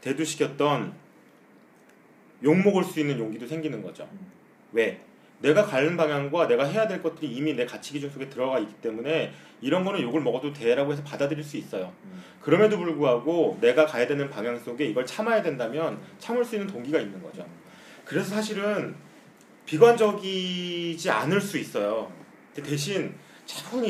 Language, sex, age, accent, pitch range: Korean, male, 30-49, native, 140-190 Hz